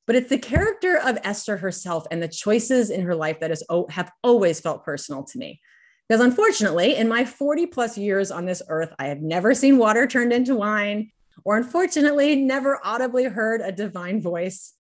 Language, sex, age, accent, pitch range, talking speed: English, female, 30-49, American, 160-225 Hz, 185 wpm